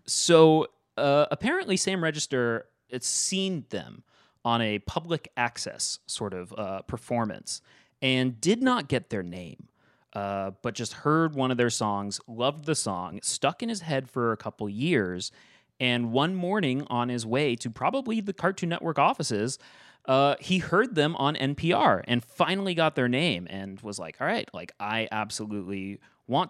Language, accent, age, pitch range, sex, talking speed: English, American, 30-49, 110-150 Hz, male, 165 wpm